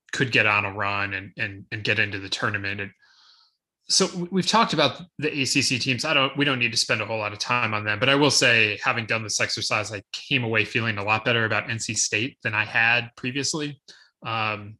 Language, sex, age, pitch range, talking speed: English, male, 20-39, 110-135 Hz, 230 wpm